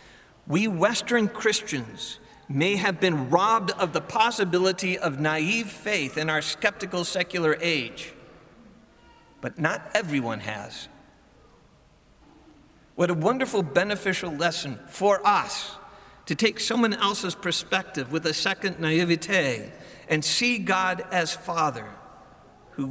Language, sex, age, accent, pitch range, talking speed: English, male, 50-69, American, 150-195 Hz, 115 wpm